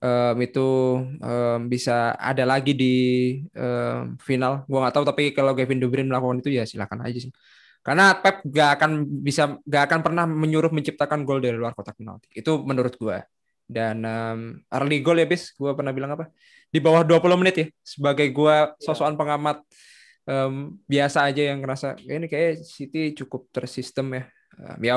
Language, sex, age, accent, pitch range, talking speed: Indonesian, male, 20-39, native, 130-160 Hz, 175 wpm